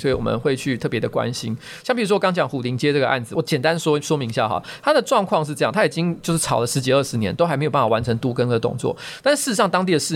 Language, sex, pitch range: Chinese, male, 130-170 Hz